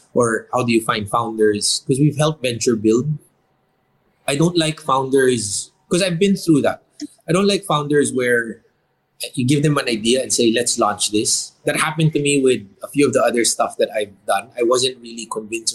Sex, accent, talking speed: male, Filipino, 200 wpm